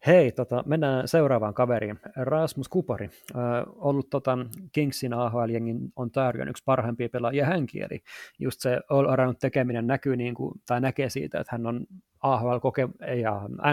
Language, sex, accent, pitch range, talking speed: Finnish, male, native, 120-135 Hz, 155 wpm